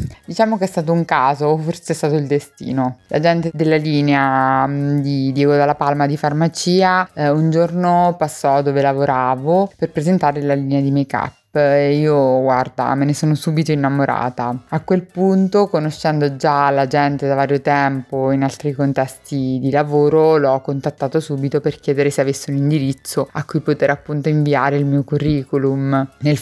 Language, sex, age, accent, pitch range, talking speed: Italian, female, 20-39, native, 140-155 Hz, 170 wpm